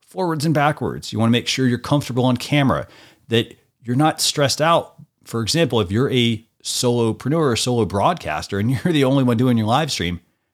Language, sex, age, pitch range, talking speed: English, male, 40-59, 100-130 Hz, 200 wpm